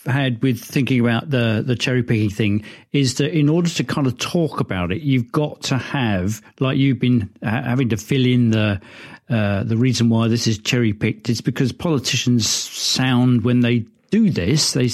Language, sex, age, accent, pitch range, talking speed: English, male, 50-69, British, 115-145 Hz, 195 wpm